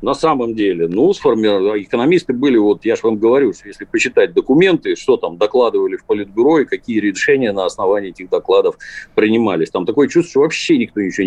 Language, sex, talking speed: Russian, male, 185 wpm